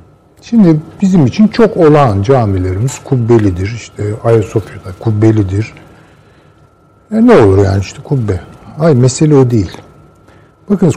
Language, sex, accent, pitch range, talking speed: Turkish, male, native, 105-155 Hz, 115 wpm